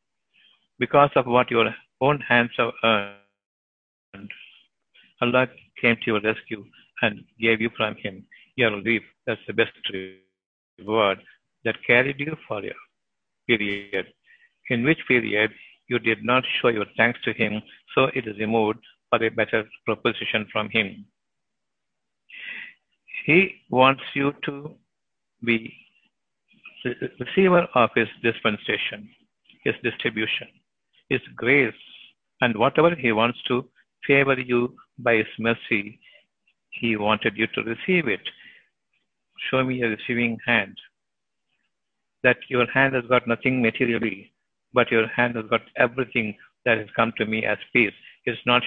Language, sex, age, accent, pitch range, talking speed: Tamil, male, 60-79, native, 110-130 Hz, 135 wpm